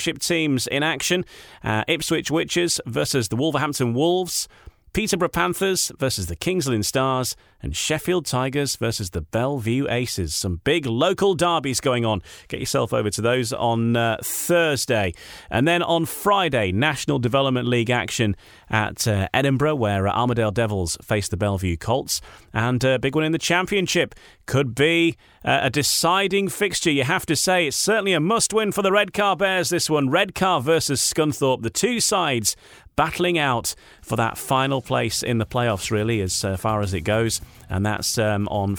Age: 30-49